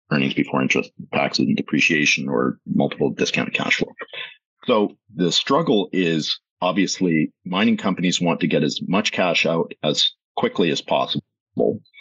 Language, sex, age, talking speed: English, male, 50-69, 145 wpm